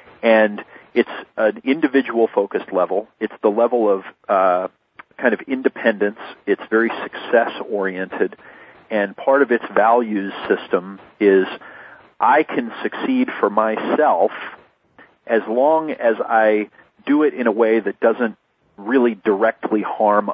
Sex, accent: male, American